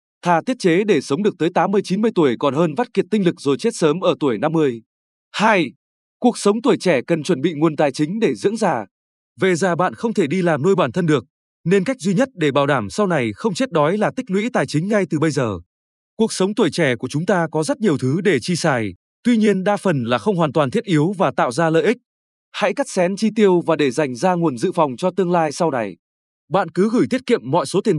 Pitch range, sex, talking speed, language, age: 150-205 Hz, male, 260 wpm, Vietnamese, 20-39